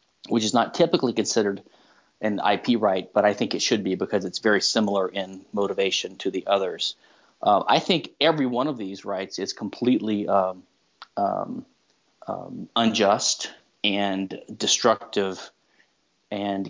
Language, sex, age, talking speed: English, male, 30-49, 145 wpm